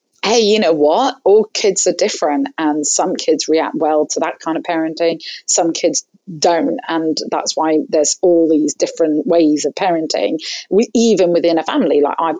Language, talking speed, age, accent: English, 185 wpm, 30-49, British